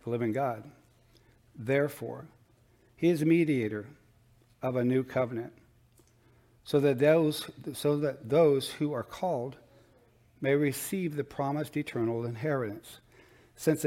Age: 60-79